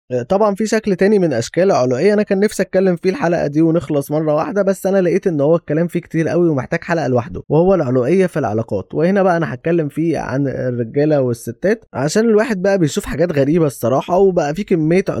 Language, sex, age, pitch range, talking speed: Arabic, male, 20-39, 140-180 Hz, 200 wpm